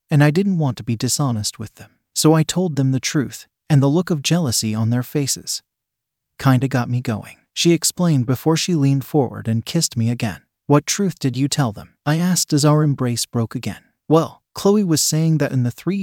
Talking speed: 215 wpm